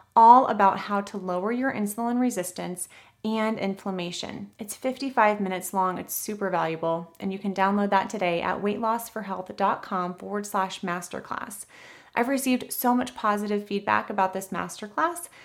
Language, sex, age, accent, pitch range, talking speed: English, female, 30-49, American, 195-235 Hz, 145 wpm